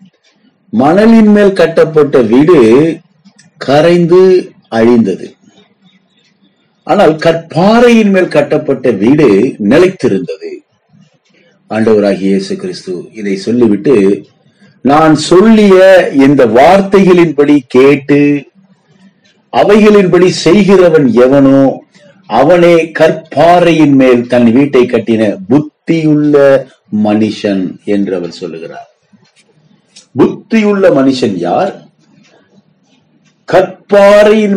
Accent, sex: native, male